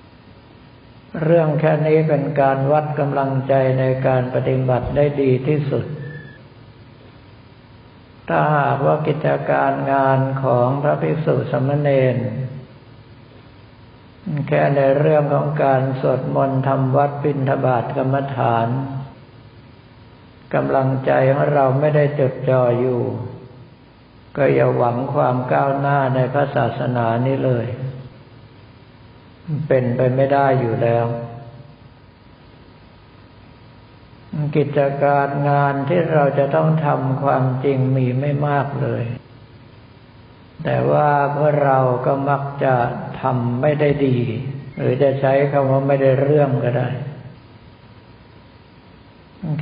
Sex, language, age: male, Thai, 60-79